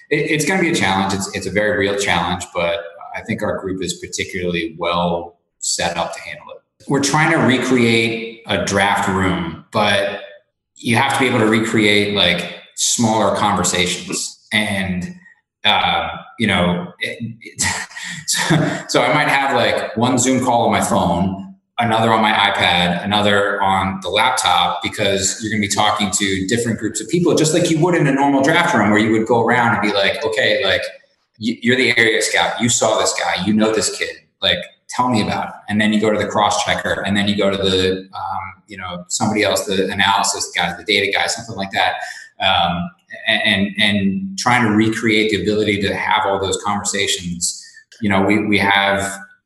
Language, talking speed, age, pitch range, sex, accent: English, 190 wpm, 20-39, 95-115 Hz, male, American